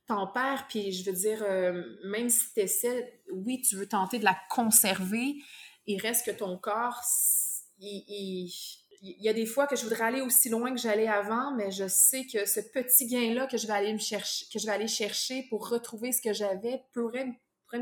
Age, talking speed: 20-39, 210 wpm